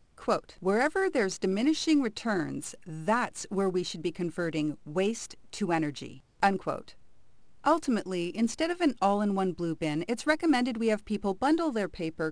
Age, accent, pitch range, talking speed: 40-59, American, 170-265 Hz, 145 wpm